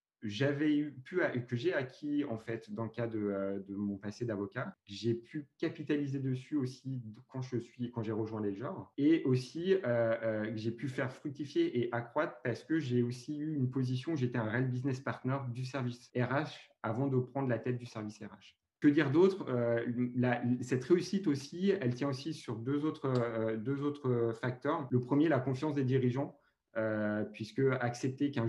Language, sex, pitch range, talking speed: English, male, 115-140 Hz, 195 wpm